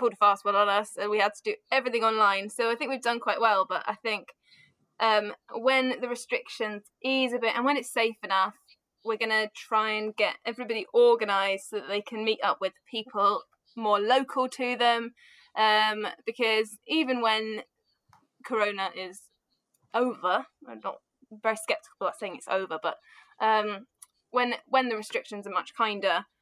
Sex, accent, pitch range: female, British, 205-250 Hz